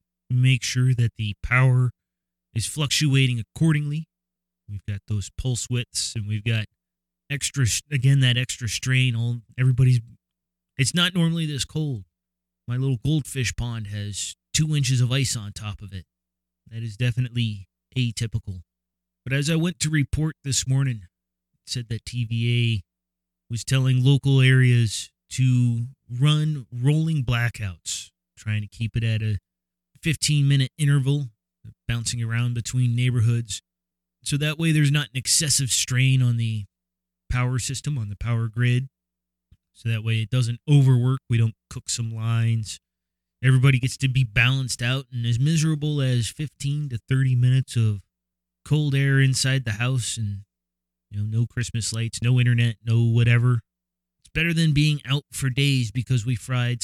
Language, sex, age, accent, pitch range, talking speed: English, male, 30-49, American, 105-130 Hz, 150 wpm